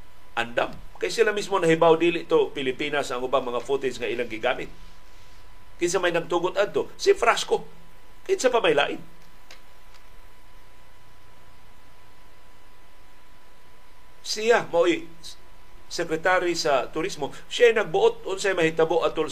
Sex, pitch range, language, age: male, 140-230 Hz, Filipino, 50-69